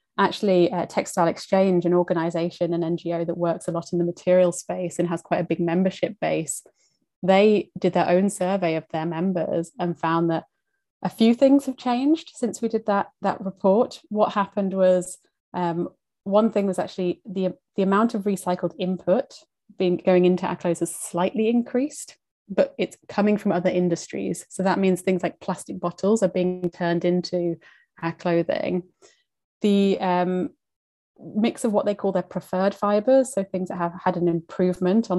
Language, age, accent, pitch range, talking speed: English, 20-39, British, 175-205 Hz, 175 wpm